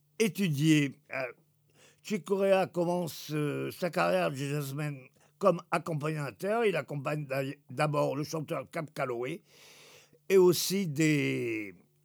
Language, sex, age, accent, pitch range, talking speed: French, male, 50-69, French, 150-190 Hz, 95 wpm